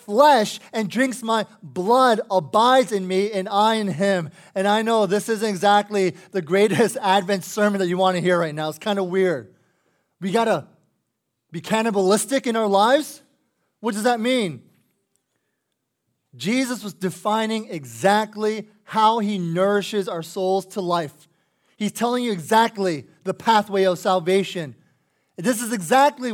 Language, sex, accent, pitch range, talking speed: English, male, American, 185-225 Hz, 150 wpm